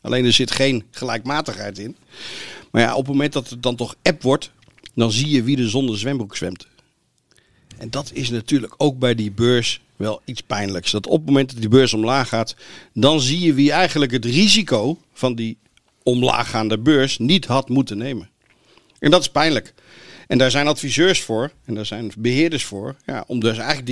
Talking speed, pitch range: 195 wpm, 110-140 Hz